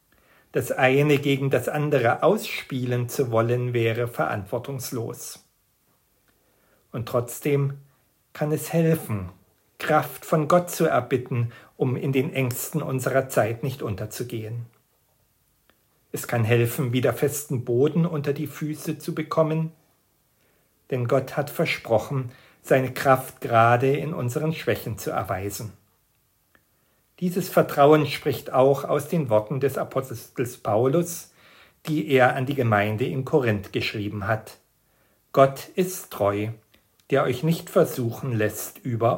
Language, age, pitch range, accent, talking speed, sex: German, 50-69, 115-150 Hz, German, 120 wpm, male